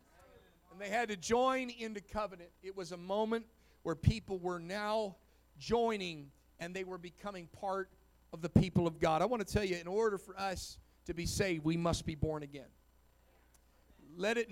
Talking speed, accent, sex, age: 180 wpm, American, male, 40-59